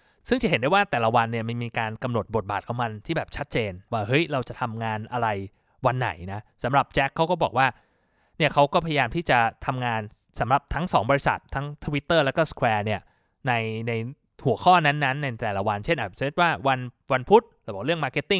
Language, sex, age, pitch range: Thai, male, 20-39, 115-165 Hz